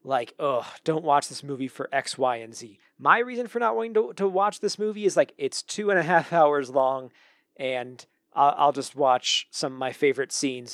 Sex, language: male, English